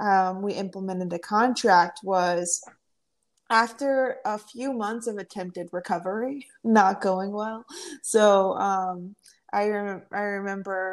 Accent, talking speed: American, 115 wpm